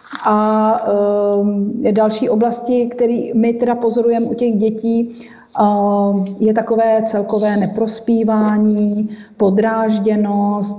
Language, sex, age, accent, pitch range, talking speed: Czech, female, 40-59, native, 205-225 Hz, 85 wpm